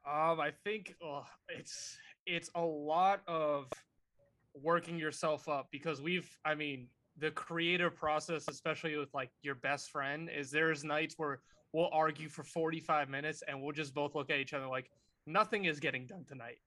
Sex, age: male, 20-39